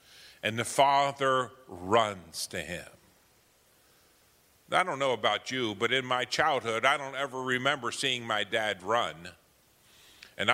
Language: English